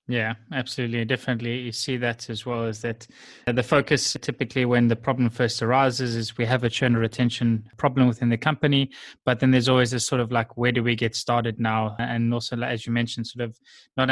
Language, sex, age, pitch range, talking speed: English, male, 20-39, 115-130 Hz, 215 wpm